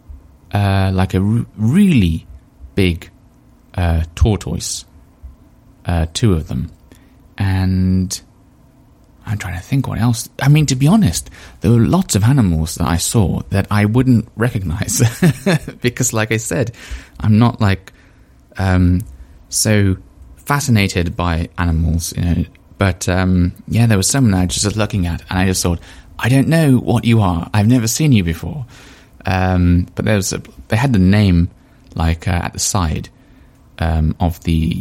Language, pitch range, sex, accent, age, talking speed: English, 85-115 Hz, male, British, 20-39, 160 wpm